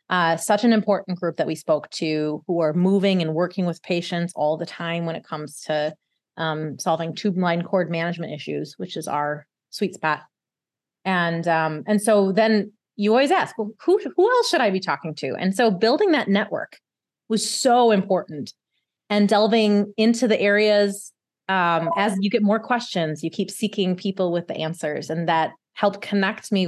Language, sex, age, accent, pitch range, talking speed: English, female, 30-49, American, 165-205 Hz, 185 wpm